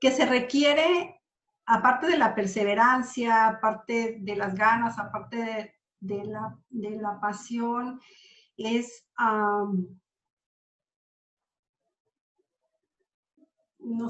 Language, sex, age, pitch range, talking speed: Spanish, female, 50-69, 210-260 Hz, 75 wpm